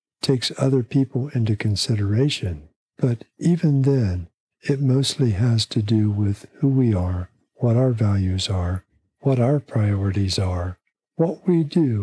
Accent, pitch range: American, 95-135 Hz